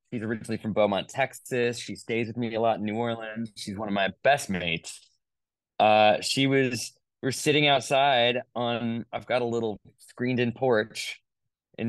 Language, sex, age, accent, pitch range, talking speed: English, male, 20-39, American, 105-135 Hz, 175 wpm